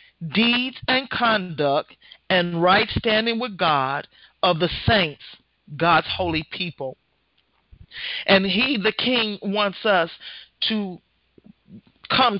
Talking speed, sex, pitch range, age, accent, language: 105 wpm, male, 150-225 Hz, 40-59, American, English